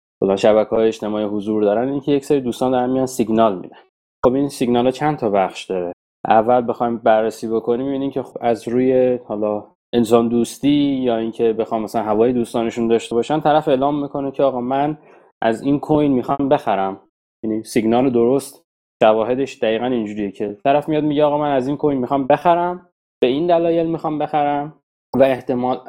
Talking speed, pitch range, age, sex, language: 175 wpm, 115-150 Hz, 20-39, male, Persian